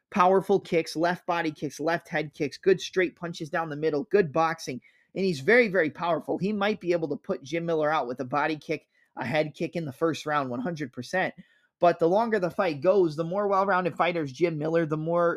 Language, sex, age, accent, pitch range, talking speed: English, male, 30-49, American, 155-185 Hz, 220 wpm